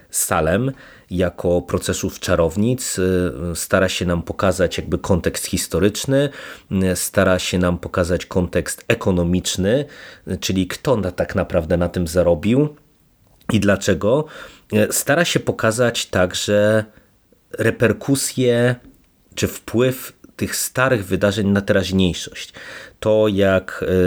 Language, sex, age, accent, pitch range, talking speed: Polish, male, 30-49, native, 90-105 Hz, 100 wpm